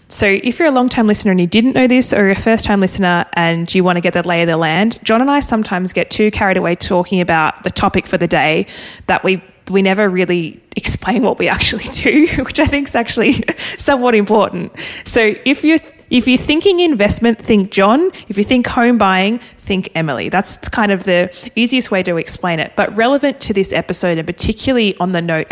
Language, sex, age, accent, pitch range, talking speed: English, female, 20-39, Australian, 175-220 Hz, 220 wpm